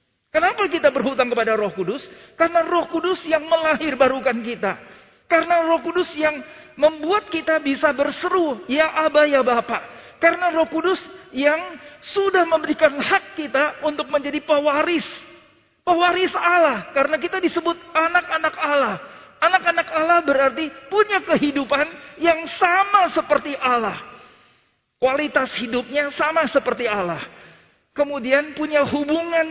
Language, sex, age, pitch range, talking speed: Indonesian, male, 40-59, 270-330 Hz, 120 wpm